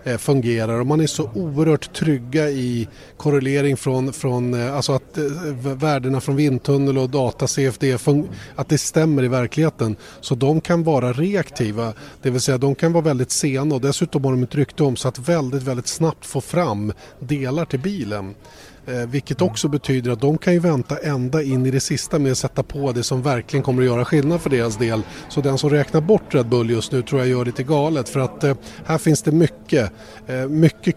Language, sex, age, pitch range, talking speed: Swedish, male, 30-49, 125-150 Hz, 200 wpm